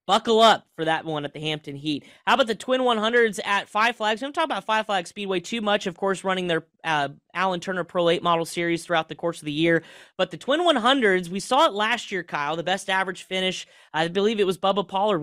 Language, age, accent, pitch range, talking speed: English, 20-39, American, 160-205 Hz, 250 wpm